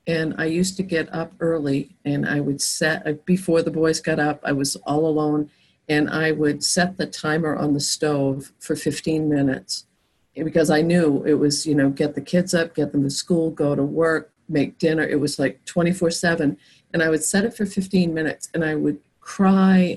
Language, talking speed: English, 205 wpm